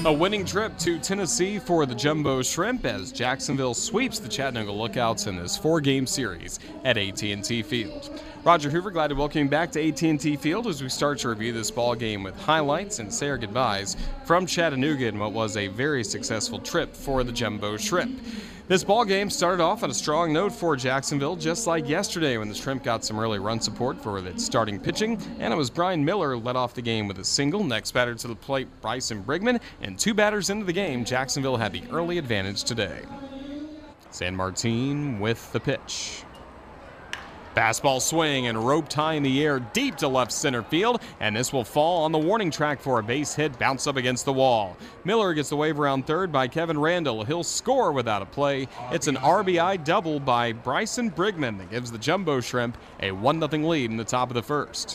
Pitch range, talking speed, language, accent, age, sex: 120-170 Hz, 205 wpm, English, American, 30-49, male